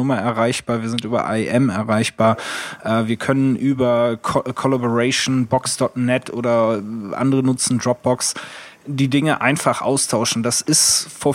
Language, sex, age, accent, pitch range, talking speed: German, male, 20-39, German, 120-130 Hz, 125 wpm